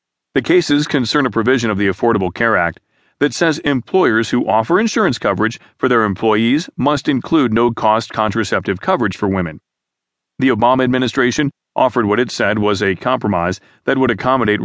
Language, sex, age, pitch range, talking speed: English, male, 40-59, 105-130 Hz, 165 wpm